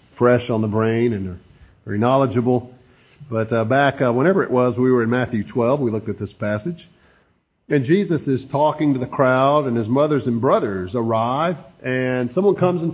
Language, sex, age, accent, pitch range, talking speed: English, male, 50-69, American, 115-150 Hz, 190 wpm